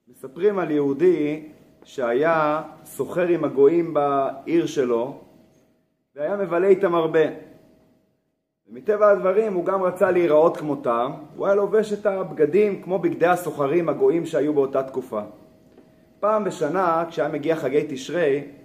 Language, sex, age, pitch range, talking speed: Hebrew, male, 30-49, 150-205 Hz, 120 wpm